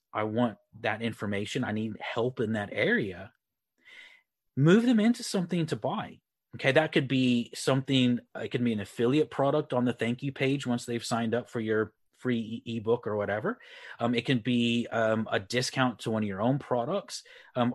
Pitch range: 110-135 Hz